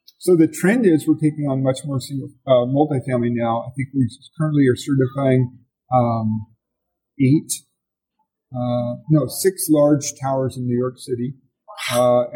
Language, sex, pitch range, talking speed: English, male, 125-155 Hz, 150 wpm